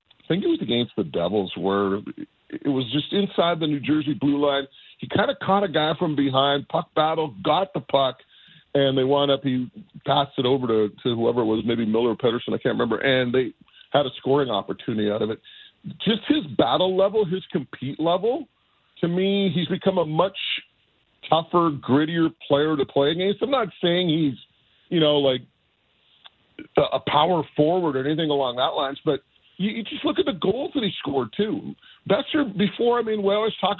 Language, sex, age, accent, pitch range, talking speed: English, male, 50-69, American, 135-185 Hz, 195 wpm